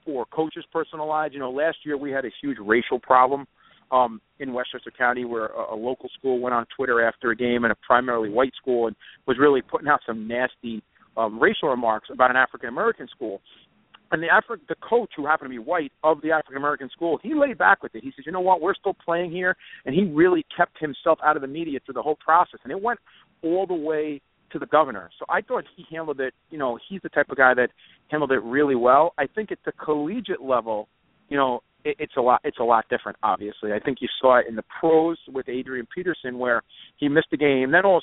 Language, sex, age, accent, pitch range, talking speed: English, male, 50-69, American, 125-165 Hz, 240 wpm